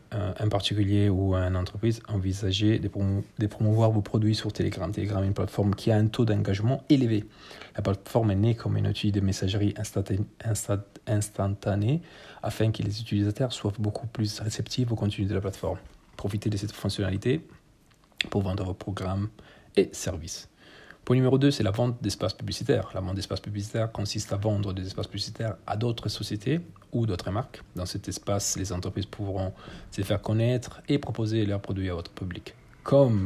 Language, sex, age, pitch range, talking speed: Italian, male, 40-59, 100-110 Hz, 175 wpm